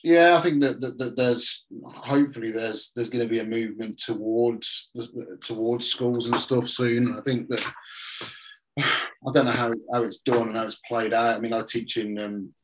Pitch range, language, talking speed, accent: 105-120 Hz, English, 200 wpm, British